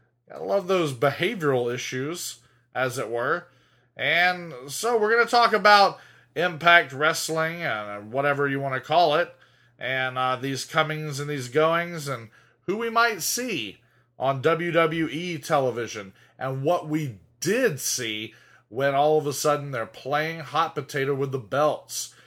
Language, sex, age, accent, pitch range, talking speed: English, male, 30-49, American, 130-175 Hz, 150 wpm